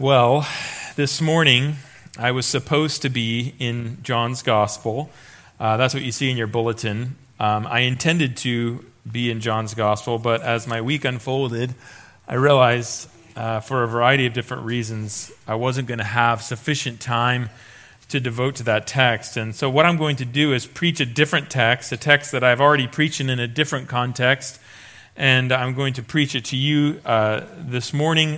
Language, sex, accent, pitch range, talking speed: English, male, American, 115-145 Hz, 180 wpm